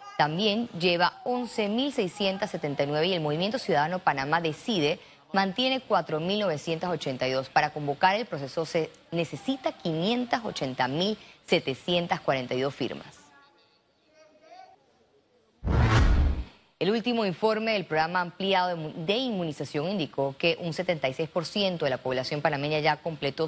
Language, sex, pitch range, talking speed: Spanish, female, 155-215 Hz, 95 wpm